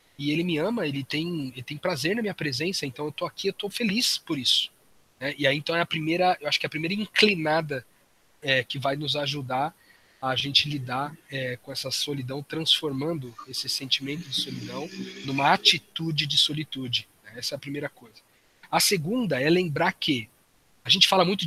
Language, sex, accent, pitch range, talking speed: Portuguese, male, Brazilian, 140-180 Hz, 200 wpm